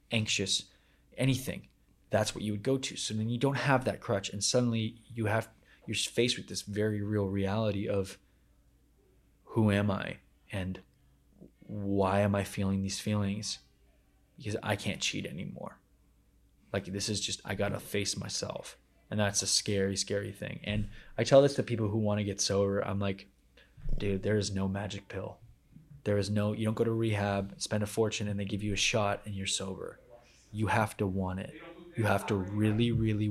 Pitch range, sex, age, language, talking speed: 95-110 Hz, male, 20-39, English, 190 wpm